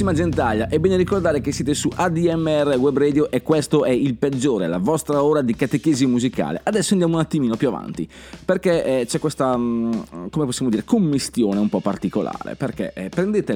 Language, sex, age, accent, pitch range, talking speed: Italian, male, 30-49, native, 115-170 Hz, 175 wpm